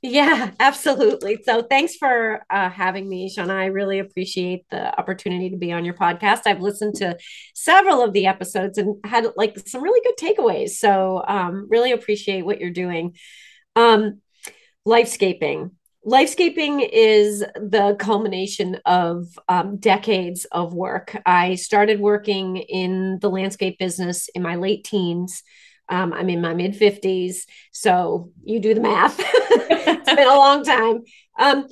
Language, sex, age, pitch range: English, female, 30-49, 185-235 Hz